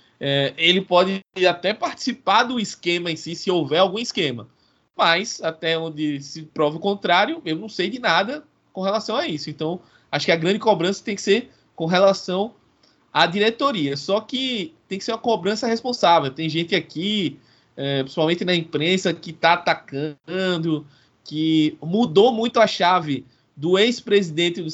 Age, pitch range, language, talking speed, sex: 20-39, 150-190 Hz, Portuguese, 165 wpm, male